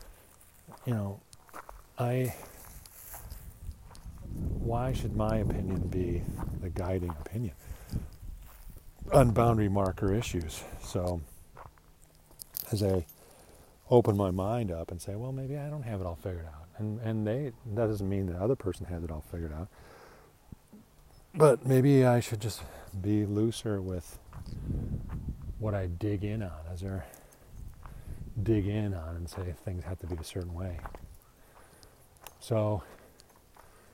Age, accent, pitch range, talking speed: 40-59, American, 85-110 Hz, 135 wpm